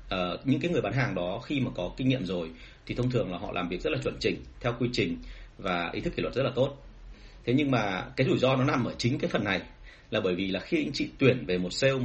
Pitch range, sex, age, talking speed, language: 95-135 Hz, male, 30-49, 290 wpm, Vietnamese